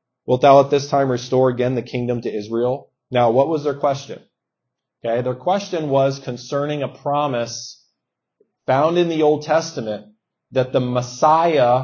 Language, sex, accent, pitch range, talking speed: English, male, American, 135-190 Hz, 155 wpm